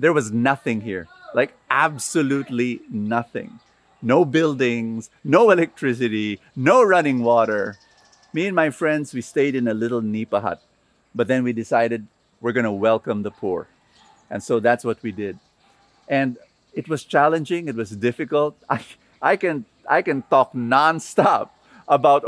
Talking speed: 150 wpm